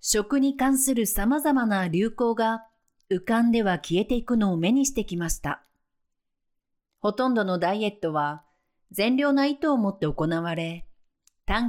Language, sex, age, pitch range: Japanese, female, 40-59, 155-235 Hz